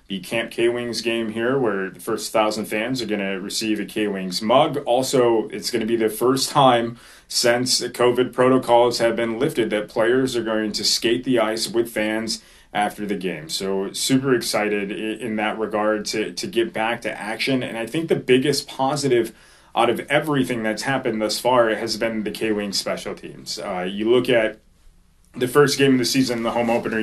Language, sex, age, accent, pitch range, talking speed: English, male, 30-49, American, 105-120 Hz, 195 wpm